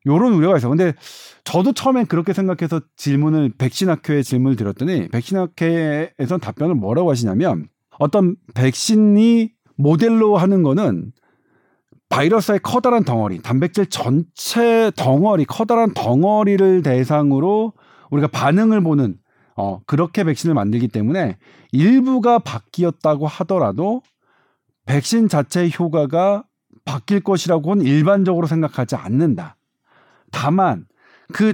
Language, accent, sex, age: Korean, native, male, 40-59